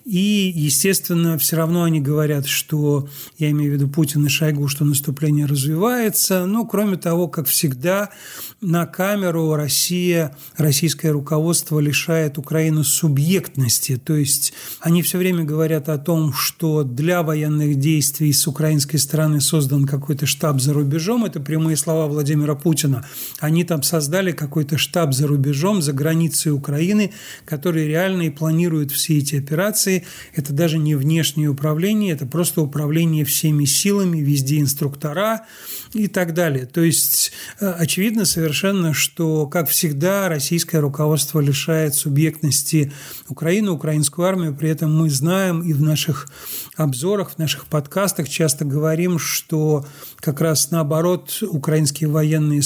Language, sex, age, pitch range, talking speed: Russian, male, 40-59, 150-175 Hz, 135 wpm